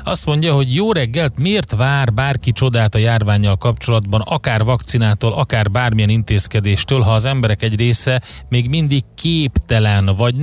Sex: male